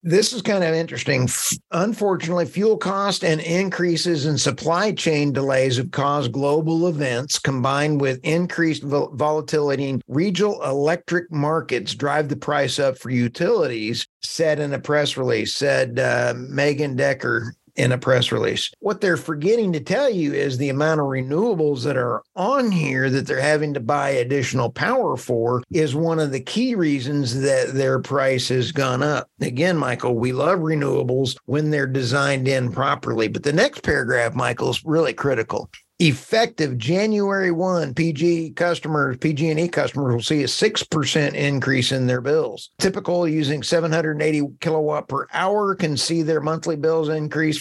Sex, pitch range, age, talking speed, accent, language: male, 140-175 Hz, 50-69, 160 wpm, American, English